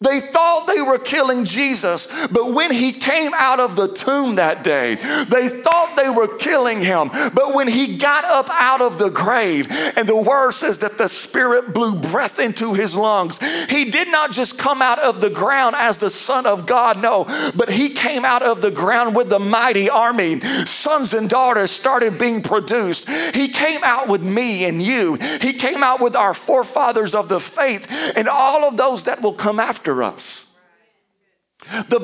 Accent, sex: American, male